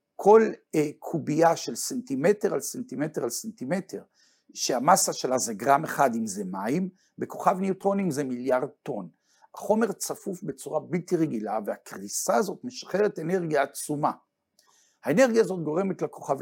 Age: 60-79